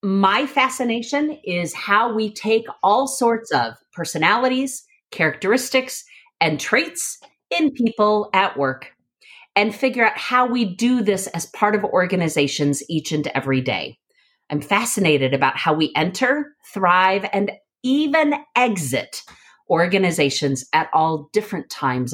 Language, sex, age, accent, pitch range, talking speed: English, female, 40-59, American, 160-255 Hz, 125 wpm